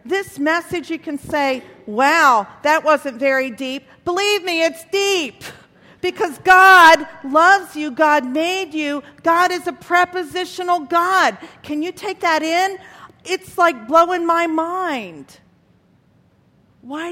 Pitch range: 240-335 Hz